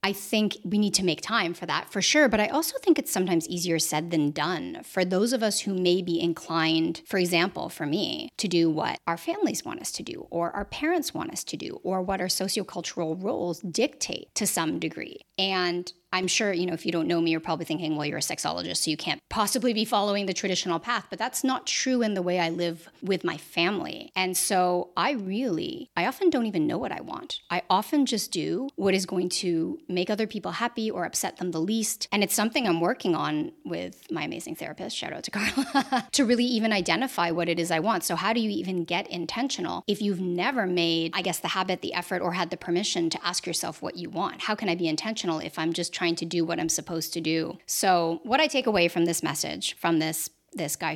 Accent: American